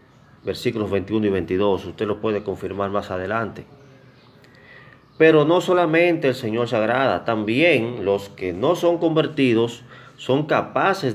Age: 30-49